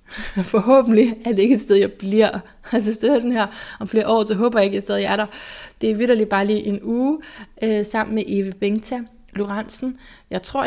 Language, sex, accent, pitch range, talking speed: Danish, female, native, 175-215 Hz, 220 wpm